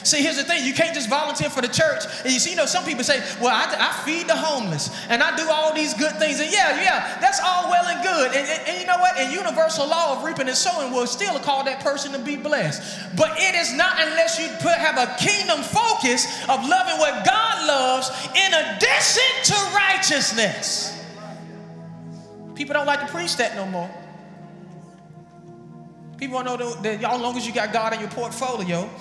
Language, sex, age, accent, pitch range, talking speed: English, male, 20-39, American, 225-320 Hz, 215 wpm